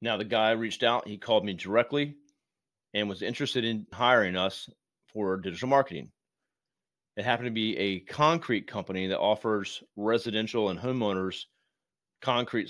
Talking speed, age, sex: 145 wpm, 30-49, male